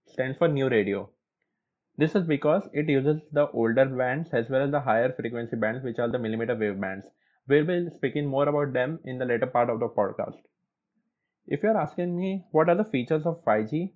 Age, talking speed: 20-39, 215 wpm